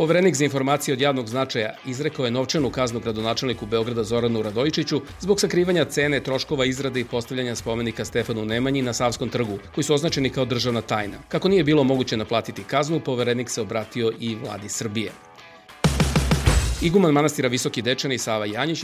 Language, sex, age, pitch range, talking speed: English, male, 40-59, 115-145 Hz, 160 wpm